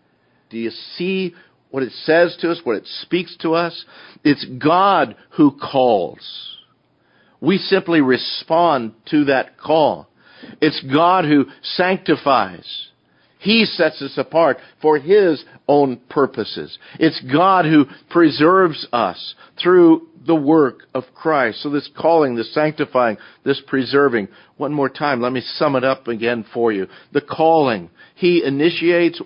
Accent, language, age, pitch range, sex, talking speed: American, English, 50-69, 125-155 Hz, male, 135 wpm